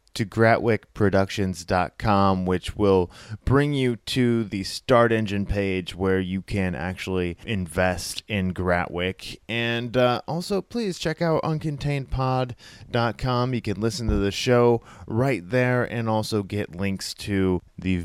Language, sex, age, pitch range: English, male, 20-39, 95-120 Hz